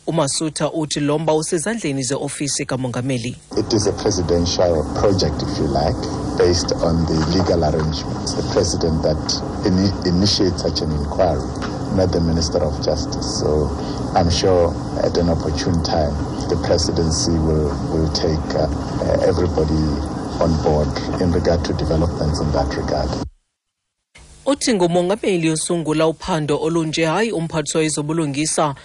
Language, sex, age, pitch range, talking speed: English, male, 60-79, 135-160 Hz, 120 wpm